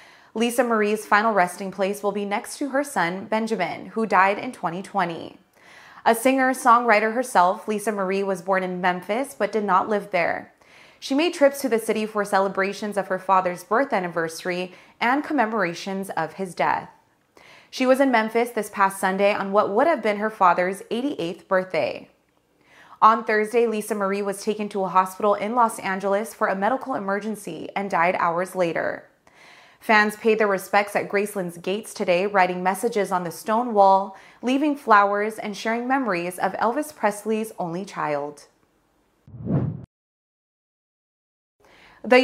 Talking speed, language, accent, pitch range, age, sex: 155 wpm, English, American, 190-230 Hz, 20-39, female